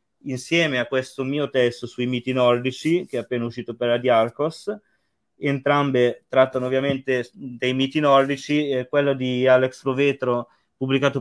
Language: Italian